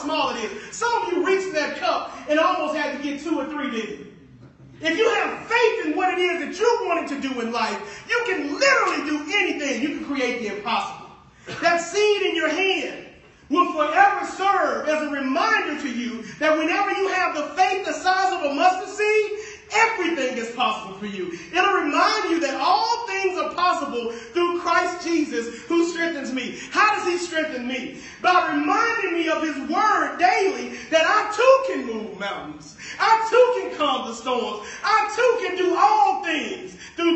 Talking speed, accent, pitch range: 185 wpm, American, 275-390 Hz